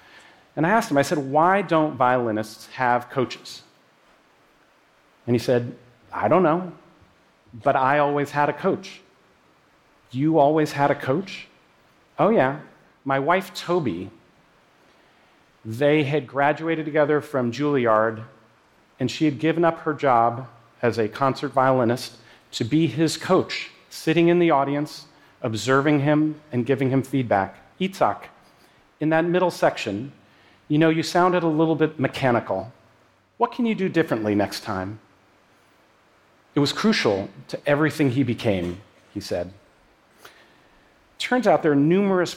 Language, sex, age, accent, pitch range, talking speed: English, male, 40-59, American, 120-155 Hz, 140 wpm